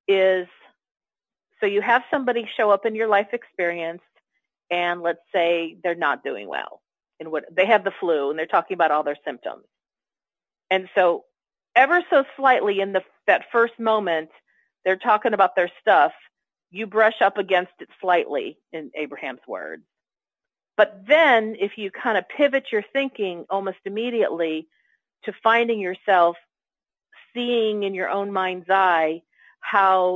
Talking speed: 150 wpm